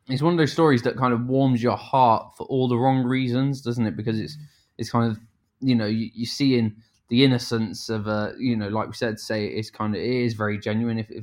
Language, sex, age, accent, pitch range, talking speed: English, male, 20-39, British, 110-125 Hz, 255 wpm